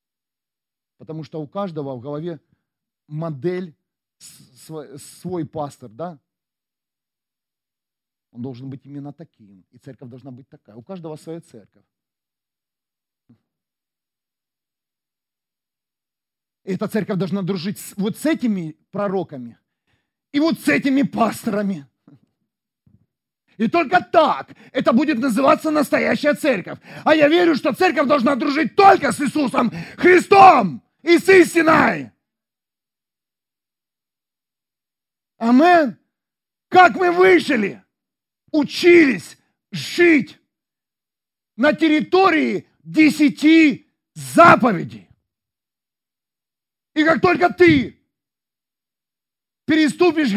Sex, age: male, 40-59